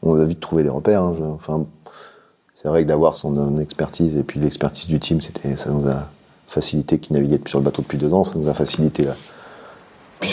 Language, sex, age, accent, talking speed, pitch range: French, male, 40-59, French, 230 wpm, 75-90 Hz